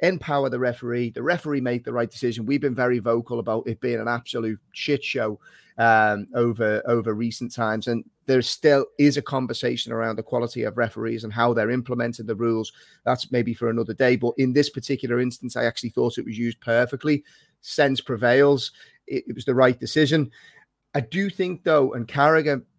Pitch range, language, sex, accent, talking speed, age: 115-140 Hz, English, male, British, 190 wpm, 30-49